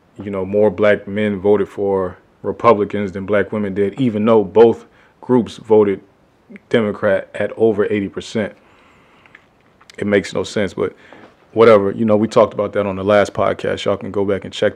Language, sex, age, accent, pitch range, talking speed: English, male, 20-39, American, 100-115 Hz, 175 wpm